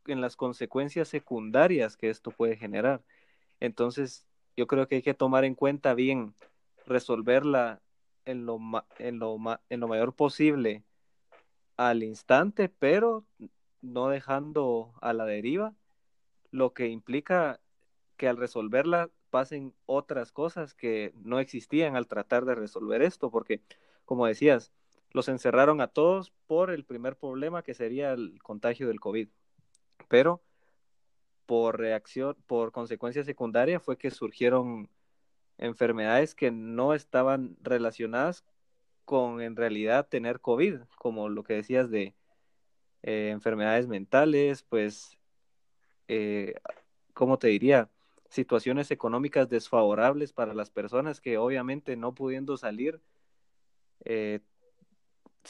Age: 30-49